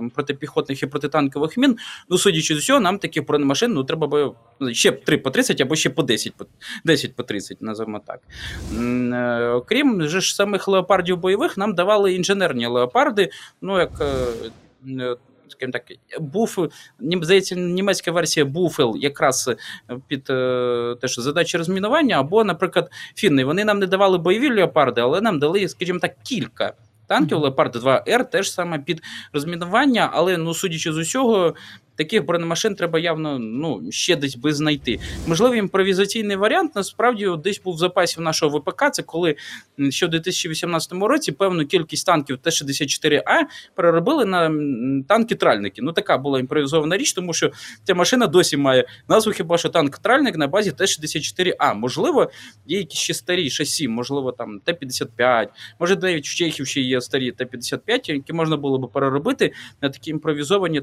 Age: 20-39